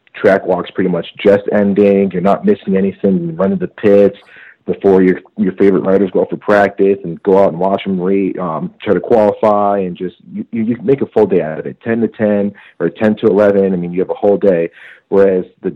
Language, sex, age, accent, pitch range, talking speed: English, male, 40-59, American, 85-100 Hz, 240 wpm